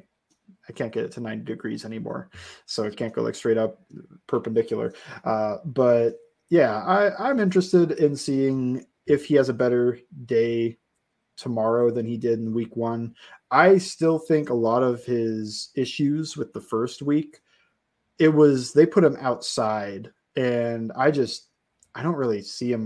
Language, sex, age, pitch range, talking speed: English, male, 20-39, 115-155 Hz, 165 wpm